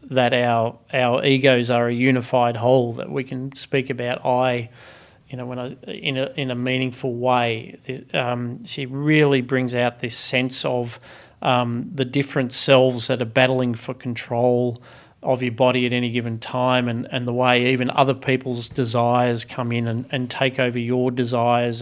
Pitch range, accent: 120-135 Hz, Australian